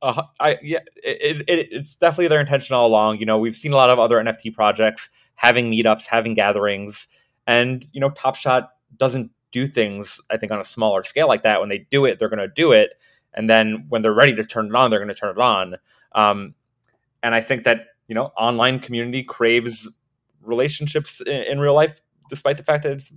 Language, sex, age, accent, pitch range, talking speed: English, male, 30-49, American, 110-135 Hz, 220 wpm